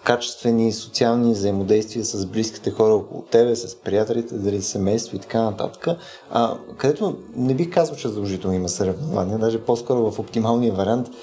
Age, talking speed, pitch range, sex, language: 20-39, 155 wpm, 110-150 Hz, male, Bulgarian